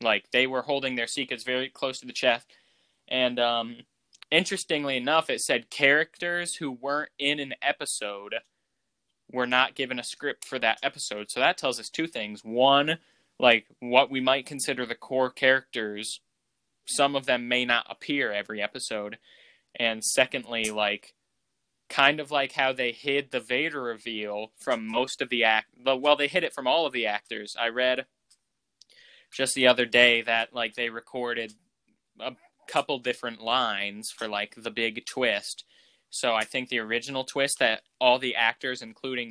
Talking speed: 170 wpm